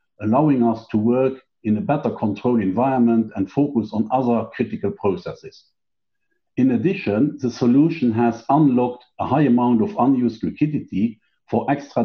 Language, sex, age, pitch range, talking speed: English, male, 50-69, 105-140 Hz, 145 wpm